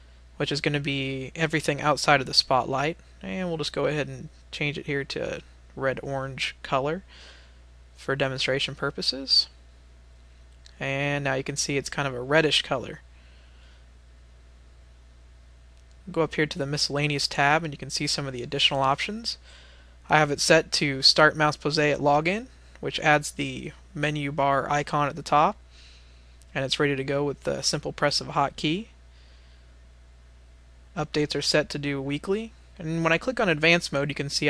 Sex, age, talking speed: male, 20-39, 175 wpm